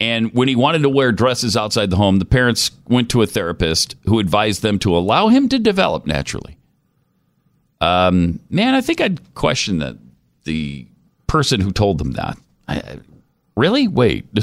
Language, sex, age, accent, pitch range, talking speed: English, male, 50-69, American, 95-155 Hz, 170 wpm